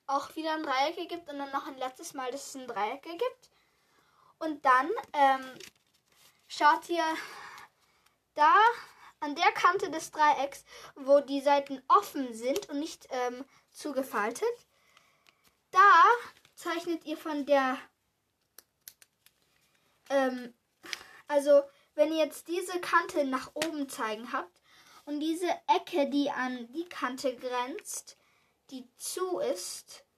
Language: German